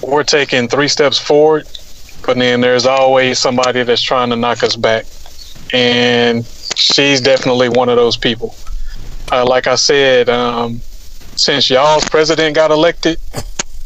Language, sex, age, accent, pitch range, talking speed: English, male, 30-49, American, 120-155 Hz, 145 wpm